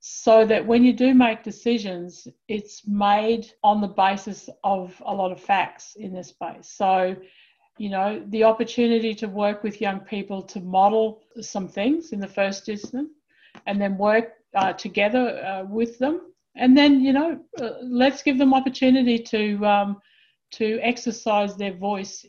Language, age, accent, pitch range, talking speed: English, 50-69, Australian, 190-230 Hz, 165 wpm